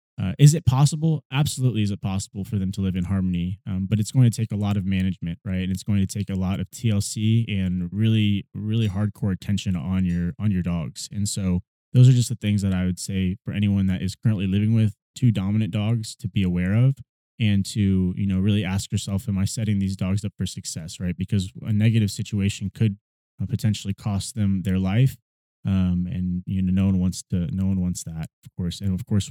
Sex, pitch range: male, 95-115 Hz